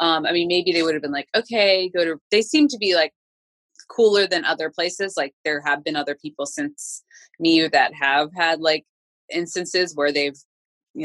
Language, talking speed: English, 200 wpm